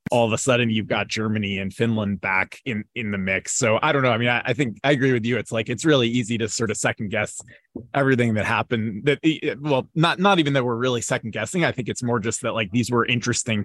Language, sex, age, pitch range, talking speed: English, male, 20-39, 105-130 Hz, 265 wpm